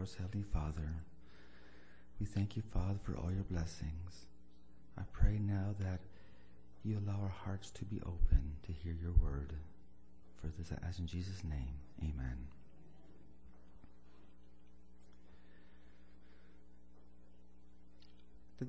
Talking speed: 105 wpm